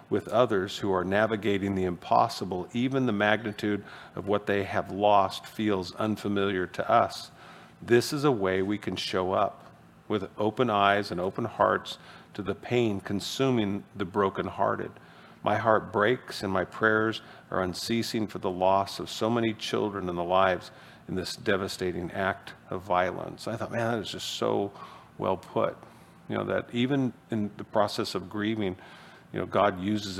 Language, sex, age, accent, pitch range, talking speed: English, male, 50-69, American, 95-110 Hz, 170 wpm